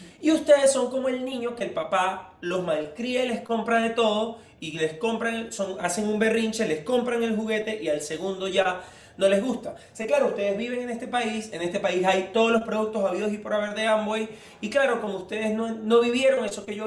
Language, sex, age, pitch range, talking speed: Spanish, male, 30-49, 200-245 Hz, 230 wpm